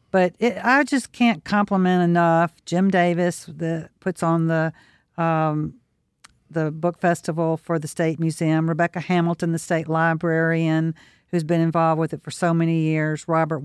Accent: American